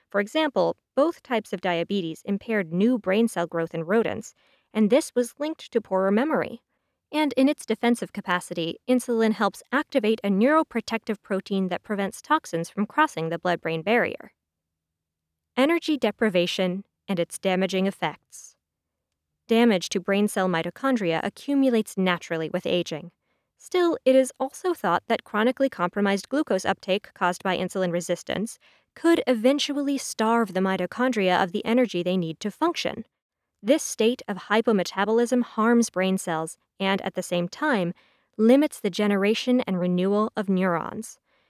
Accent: American